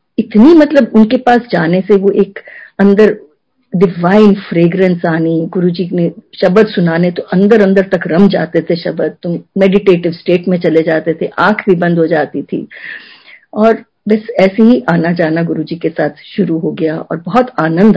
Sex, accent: female, native